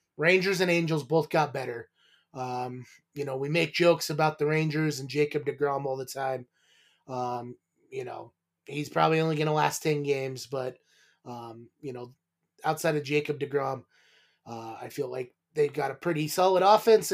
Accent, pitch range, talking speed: American, 140-165 Hz, 175 wpm